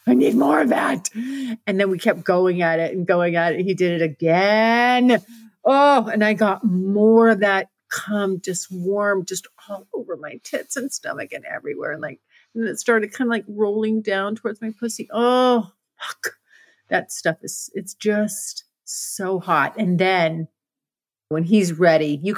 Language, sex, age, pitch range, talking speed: English, female, 40-59, 175-225 Hz, 180 wpm